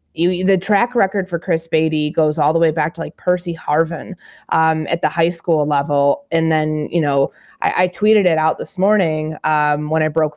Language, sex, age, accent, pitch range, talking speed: English, female, 20-39, American, 155-175 Hz, 210 wpm